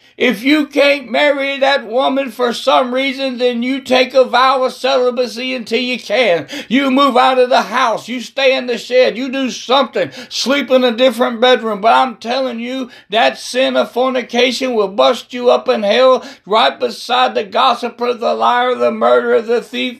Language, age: English, 60-79